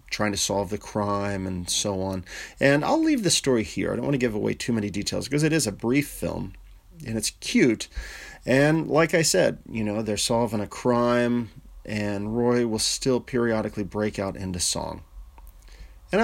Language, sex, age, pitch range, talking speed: English, male, 30-49, 95-125 Hz, 190 wpm